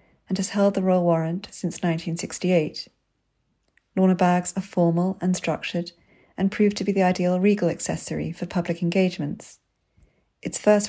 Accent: British